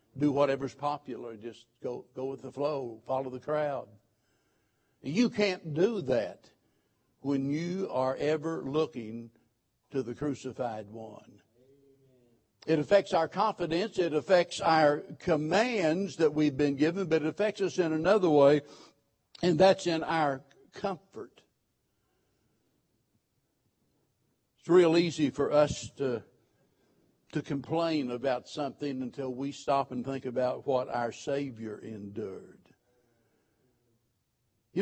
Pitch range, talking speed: 130-175 Hz, 120 wpm